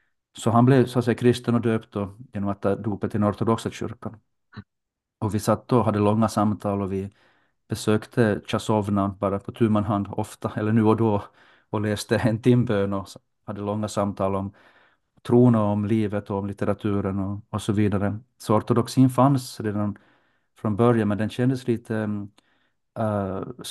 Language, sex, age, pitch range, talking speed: Swedish, male, 40-59, 105-120 Hz, 170 wpm